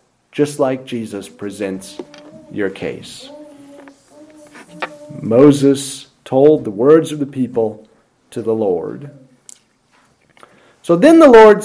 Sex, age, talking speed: male, 40-59, 105 wpm